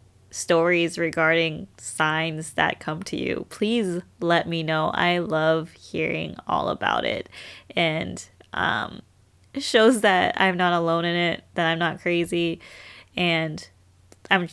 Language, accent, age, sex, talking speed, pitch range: English, American, 20-39, female, 135 wpm, 160-190 Hz